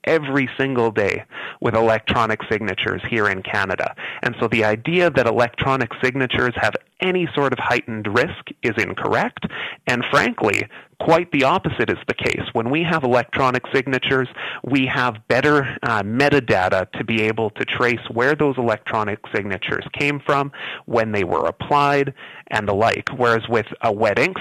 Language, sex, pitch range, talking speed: English, male, 115-135 Hz, 160 wpm